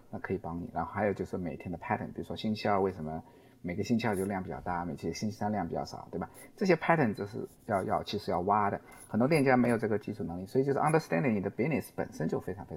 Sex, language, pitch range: male, Chinese, 105-135 Hz